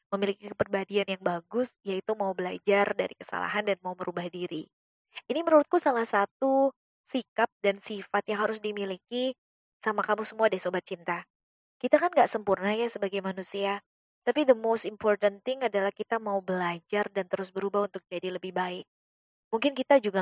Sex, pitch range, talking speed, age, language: female, 190-230 Hz, 165 wpm, 20-39, Indonesian